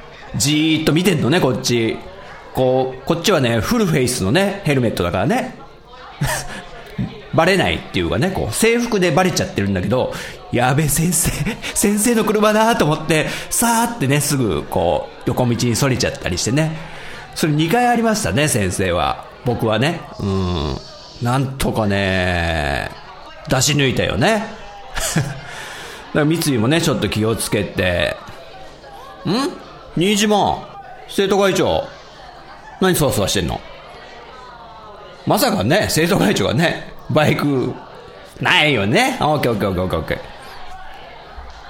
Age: 40-59